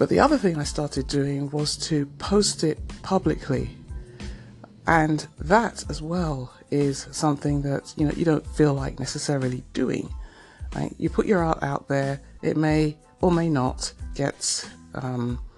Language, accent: English, British